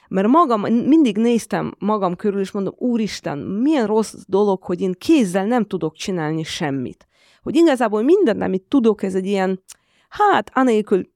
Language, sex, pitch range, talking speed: Hungarian, female, 175-230 Hz, 155 wpm